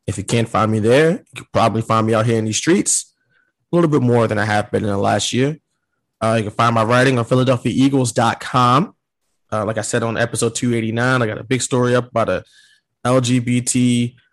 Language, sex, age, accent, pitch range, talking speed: English, male, 20-39, American, 115-140 Hz, 210 wpm